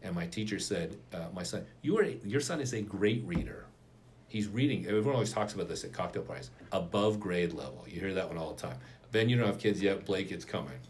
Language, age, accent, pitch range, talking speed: English, 40-59, American, 95-120 Hz, 240 wpm